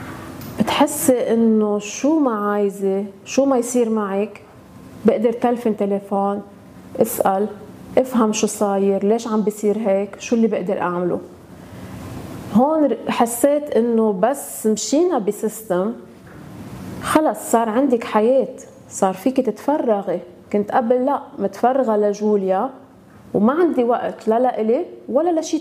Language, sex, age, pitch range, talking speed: Arabic, female, 30-49, 200-250 Hz, 115 wpm